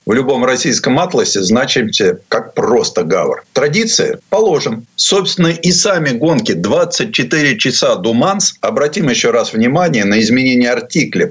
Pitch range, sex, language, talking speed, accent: 130-205 Hz, male, Russian, 125 wpm, native